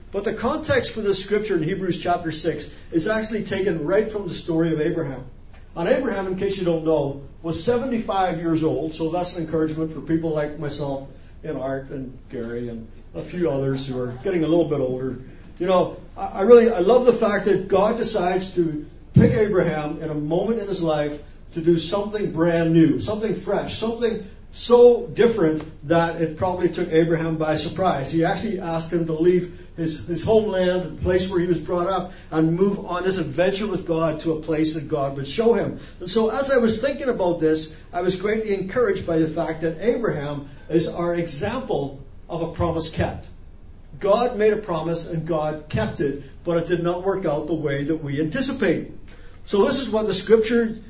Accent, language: American, English